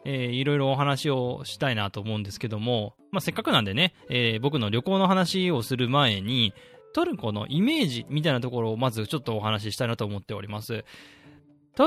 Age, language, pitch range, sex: 20-39, Japanese, 110-175 Hz, male